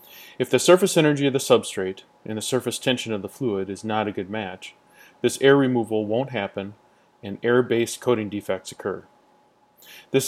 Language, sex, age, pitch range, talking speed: English, male, 30-49, 105-130 Hz, 175 wpm